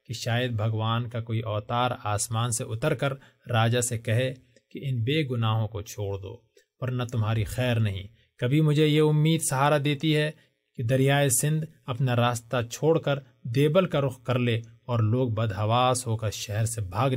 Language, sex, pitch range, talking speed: Urdu, male, 110-140 Hz, 175 wpm